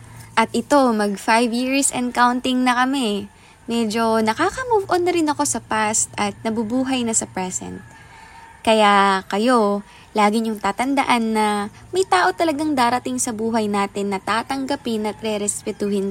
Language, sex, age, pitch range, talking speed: Filipino, female, 20-39, 210-280 Hz, 140 wpm